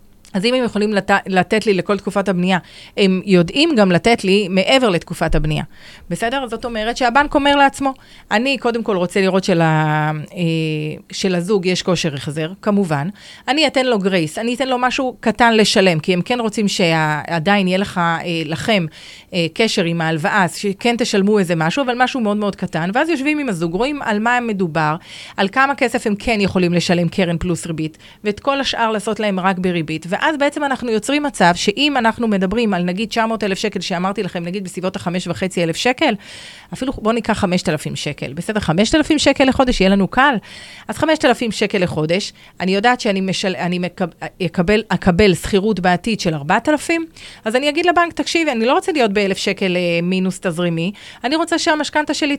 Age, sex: 30-49, female